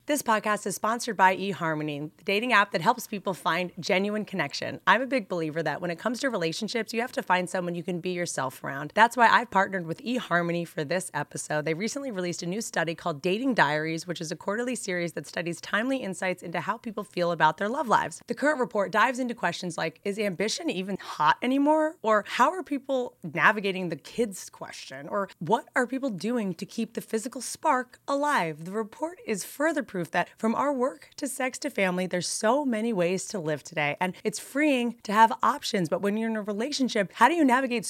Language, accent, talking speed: English, American, 215 wpm